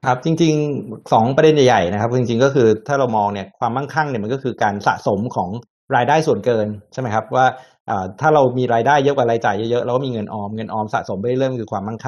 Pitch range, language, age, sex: 115-140 Hz, Thai, 60-79, male